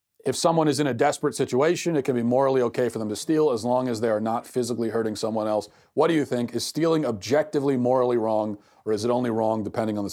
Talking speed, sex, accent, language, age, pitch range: 255 wpm, male, American, English, 40-59, 105-135 Hz